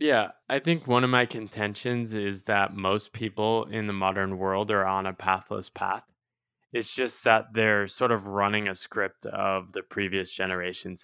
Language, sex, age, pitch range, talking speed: English, male, 20-39, 100-125 Hz, 180 wpm